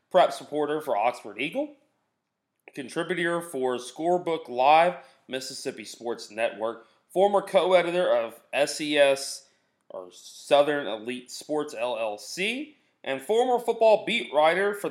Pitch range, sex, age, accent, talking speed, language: 125-155 Hz, male, 30-49, American, 110 wpm, English